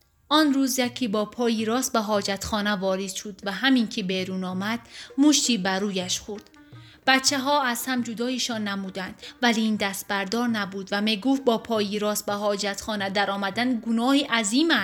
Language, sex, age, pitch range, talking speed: Persian, female, 30-49, 195-235 Hz, 170 wpm